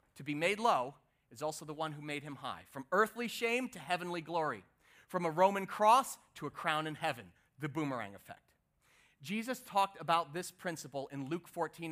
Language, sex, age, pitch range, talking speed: English, male, 30-49, 165-225 Hz, 190 wpm